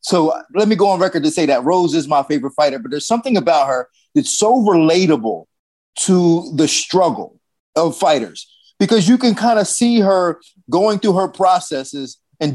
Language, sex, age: English, male, 30-49